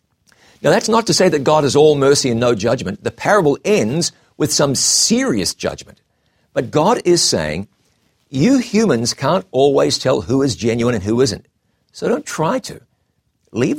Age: 50-69